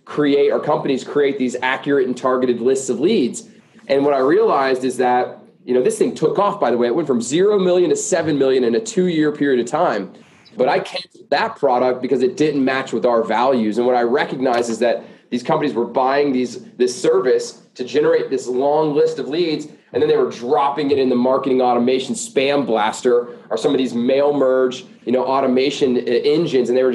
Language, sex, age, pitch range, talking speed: English, male, 20-39, 125-160 Hz, 220 wpm